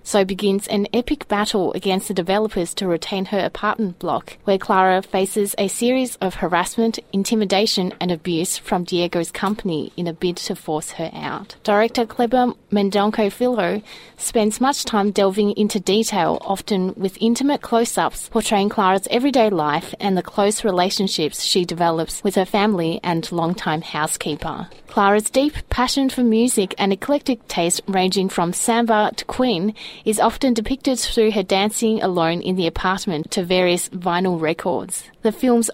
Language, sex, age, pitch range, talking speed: English, female, 30-49, 185-225 Hz, 155 wpm